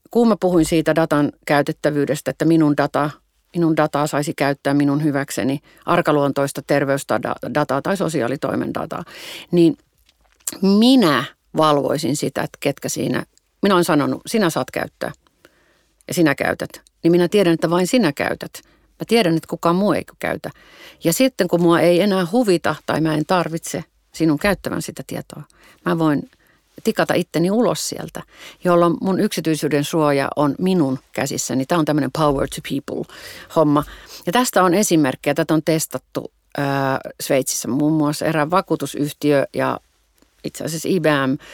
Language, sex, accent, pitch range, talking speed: Finnish, female, native, 145-175 Hz, 145 wpm